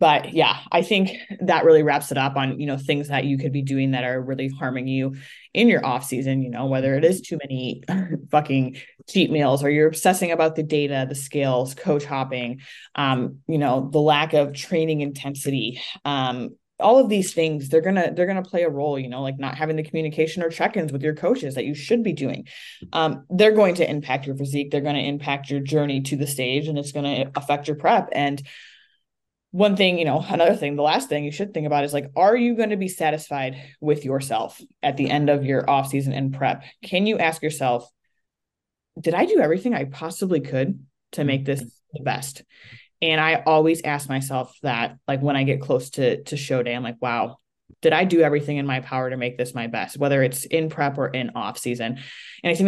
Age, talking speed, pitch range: 20-39, 225 wpm, 135-160 Hz